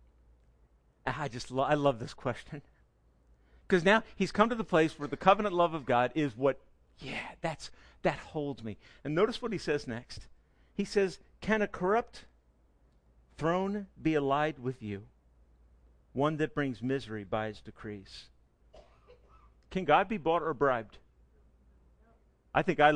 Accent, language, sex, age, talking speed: American, English, male, 50-69, 155 wpm